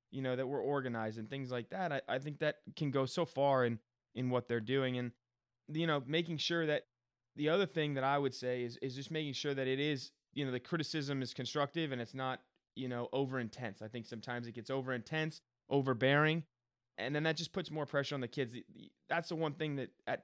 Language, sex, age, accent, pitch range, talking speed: English, male, 20-39, American, 120-145 Hz, 235 wpm